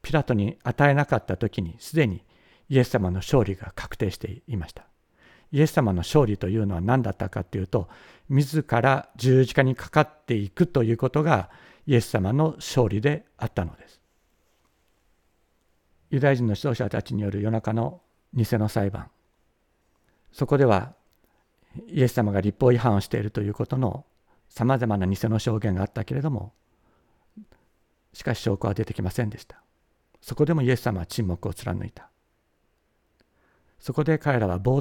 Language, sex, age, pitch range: Japanese, male, 60-79, 95-130 Hz